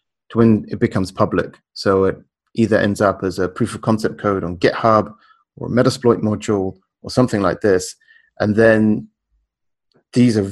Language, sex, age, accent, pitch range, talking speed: English, male, 30-49, British, 95-115 Hz, 170 wpm